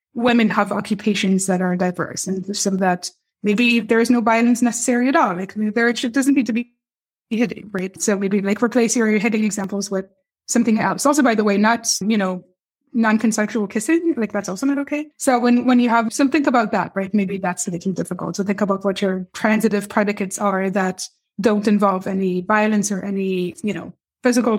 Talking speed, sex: 200 wpm, female